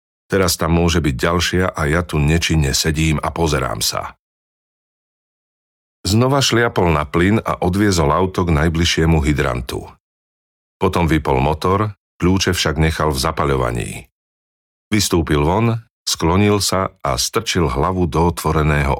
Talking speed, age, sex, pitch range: 125 wpm, 40-59, male, 75-95 Hz